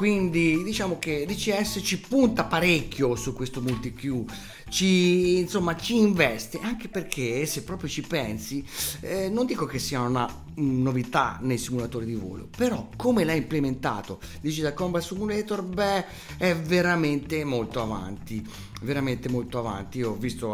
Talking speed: 145 wpm